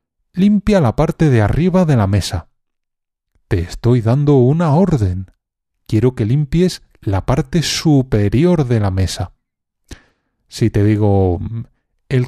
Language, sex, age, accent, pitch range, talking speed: Spanish, male, 30-49, Spanish, 100-145 Hz, 125 wpm